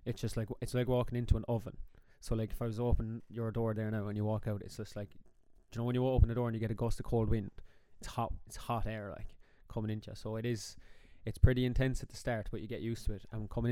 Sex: male